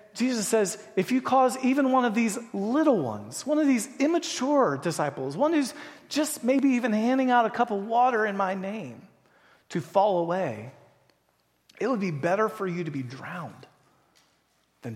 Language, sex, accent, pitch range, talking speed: English, male, American, 155-215 Hz, 175 wpm